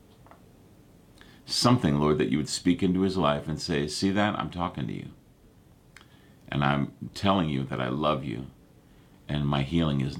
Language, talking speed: English, 170 wpm